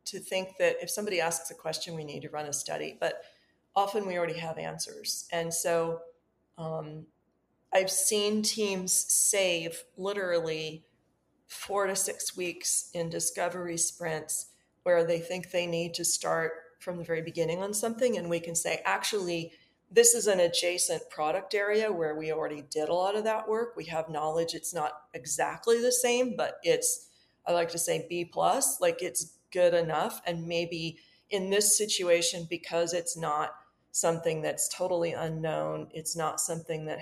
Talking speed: 170 wpm